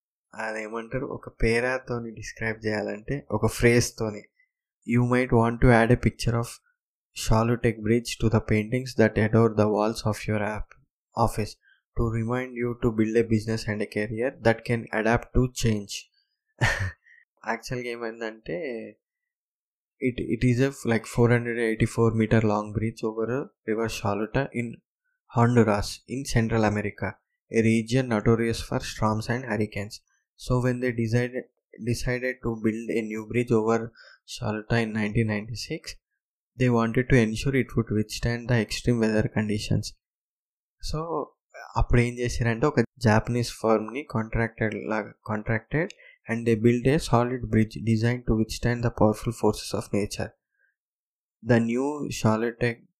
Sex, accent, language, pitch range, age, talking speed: male, native, Telugu, 110-120 Hz, 20-39, 155 wpm